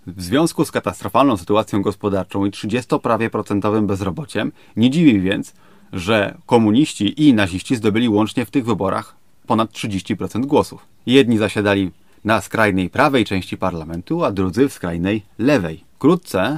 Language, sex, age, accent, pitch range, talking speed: Polish, male, 30-49, native, 100-125 Hz, 140 wpm